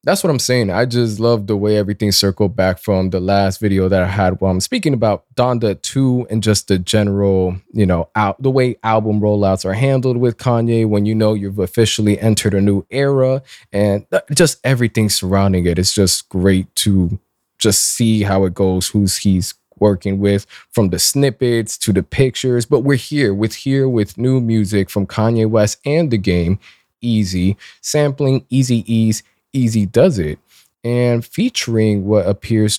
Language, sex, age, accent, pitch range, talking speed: English, male, 20-39, American, 95-120 Hz, 185 wpm